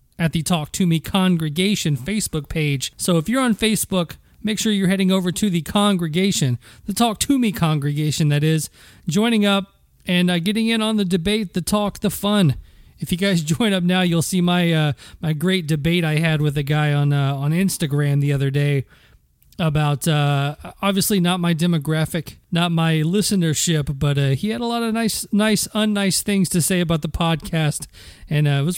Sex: male